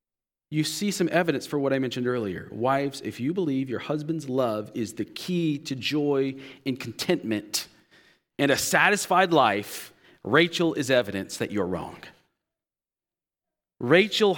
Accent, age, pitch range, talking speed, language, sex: American, 40-59, 125-185 Hz, 140 wpm, English, male